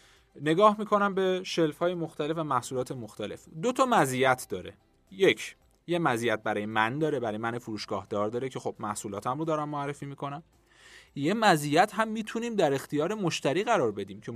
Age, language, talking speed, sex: 30-49, Persian, 175 wpm, male